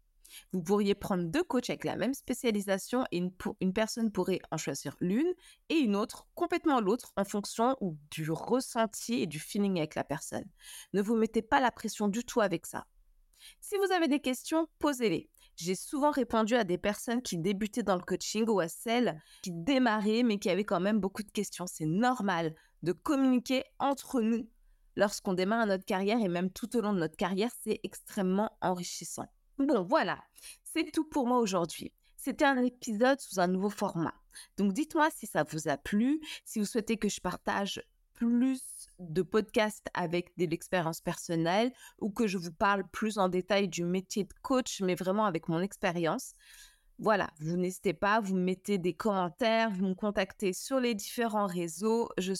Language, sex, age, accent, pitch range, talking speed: French, female, 20-39, French, 185-240 Hz, 185 wpm